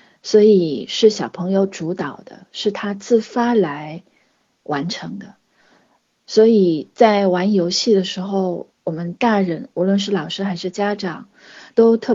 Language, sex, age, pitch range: Chinese, female, 30-49, 175-220 Hz